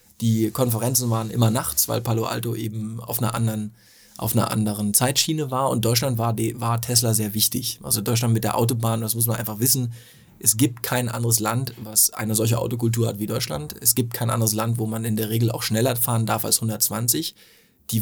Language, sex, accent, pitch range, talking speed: German, male, German, 110-120 Hz, 205 wpm